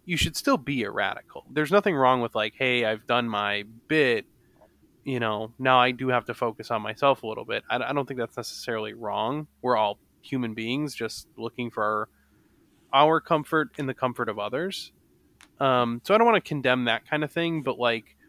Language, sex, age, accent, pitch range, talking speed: English, male, 20-39, American, 110-135 Hz, 205 wpm